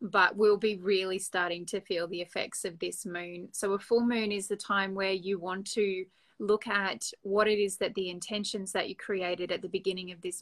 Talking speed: 225 wpm